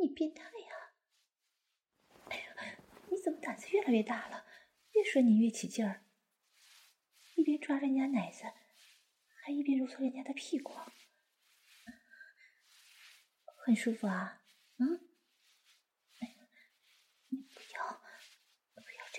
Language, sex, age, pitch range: English, female, 30-49, 240-335 Hz